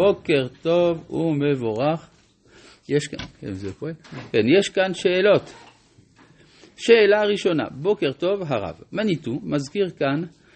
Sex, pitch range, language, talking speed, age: male, 125-170 Hz, Hebrew, 95 wpm, 50-69